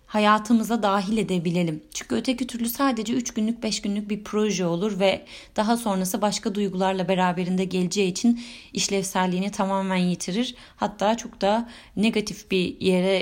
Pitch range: 185-245 Hz